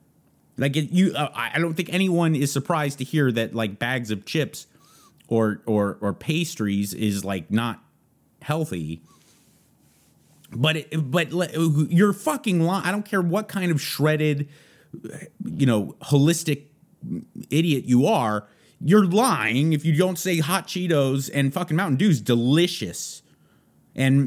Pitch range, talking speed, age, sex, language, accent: 125-175 Hz, 145 wpm, 30-49, male, English, American